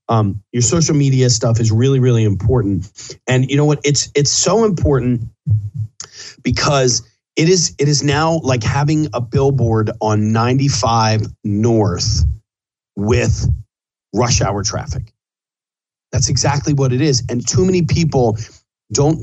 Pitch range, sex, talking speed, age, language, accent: 110-140 Hz, male, 135 wpm, 40-59, English, American